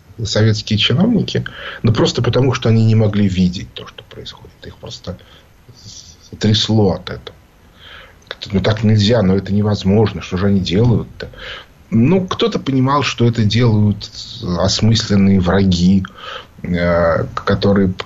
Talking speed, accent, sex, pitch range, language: 125 wpm, native, male, 95-135 Hz, Russian